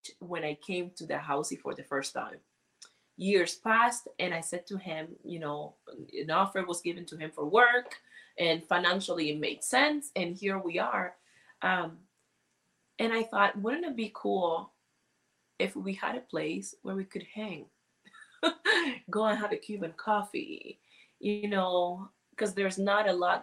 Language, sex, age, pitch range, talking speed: English, female, 20-39, 175-235 Hz, 170 wpm